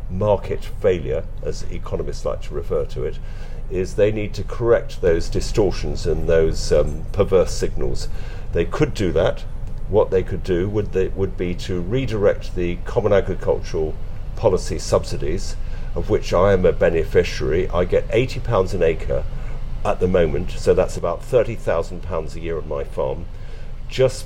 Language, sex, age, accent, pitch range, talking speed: English, male, 50-69, British, 90-120 Hz, 160 wpm